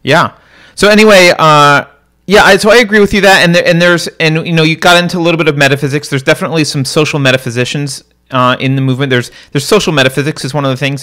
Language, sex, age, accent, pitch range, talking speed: English, male, 30-49, American, 110-165 Hz, 245 wpm